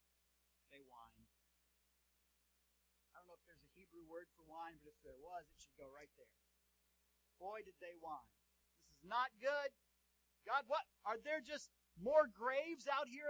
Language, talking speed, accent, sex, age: English, 170 wpm, American, male, 40-59